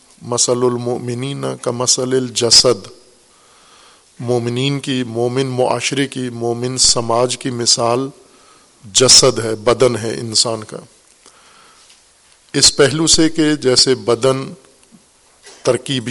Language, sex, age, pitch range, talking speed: Urdu, male, 50-69, 120-135 Hz, 100 wpm